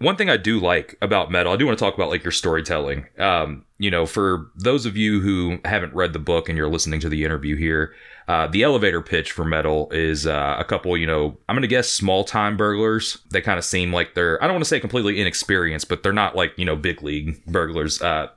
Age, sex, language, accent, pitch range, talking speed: 30-49, male, English, American, 80-100 Hz, 245 wpm